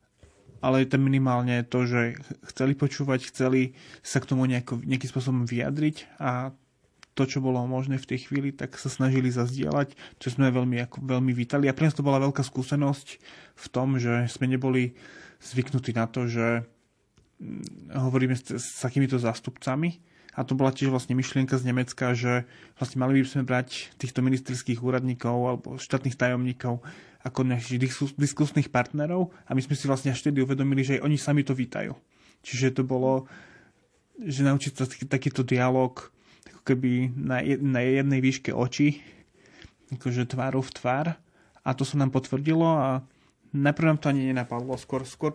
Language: Slovak